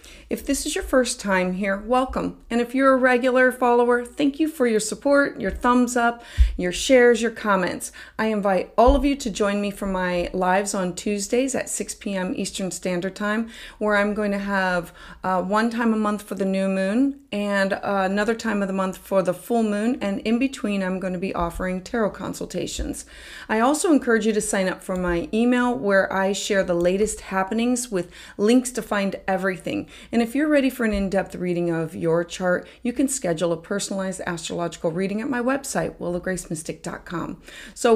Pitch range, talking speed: 185-235 Hz, 195 wpm